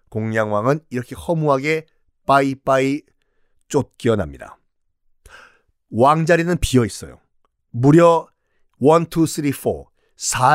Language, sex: Korean, male